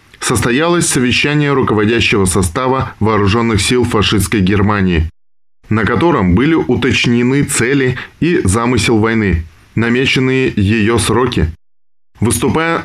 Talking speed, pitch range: 95 wpm, 100-135 Hz